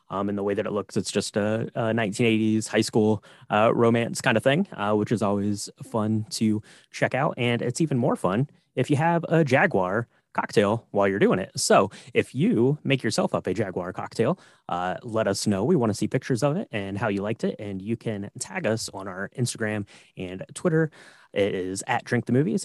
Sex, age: male, 20-39